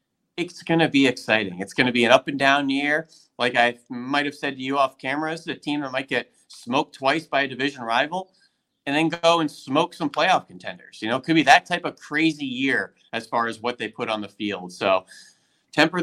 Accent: American